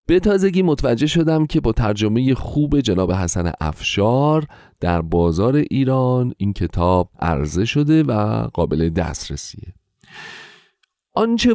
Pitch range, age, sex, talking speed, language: 85-130 Hz, 40-59, male, 115 wpm, Persian